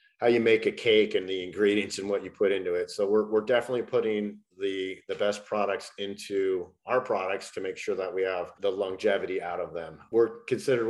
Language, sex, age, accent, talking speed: English, male, 40-59, American, 215 wpm